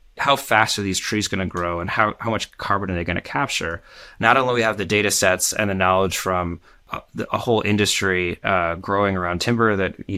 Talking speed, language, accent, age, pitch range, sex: 235 wpm, English, American, 30-49, 90-105 Hz, male